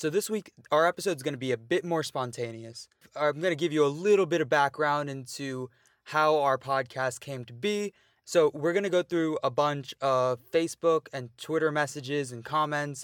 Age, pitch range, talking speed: 20-39, 130-150 Hz, 205 wpm